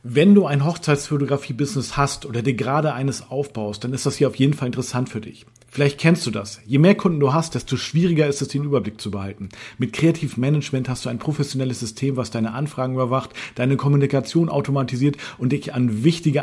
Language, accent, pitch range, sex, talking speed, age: German, German, 120-145 Hz, male, 200 wpm, 40-59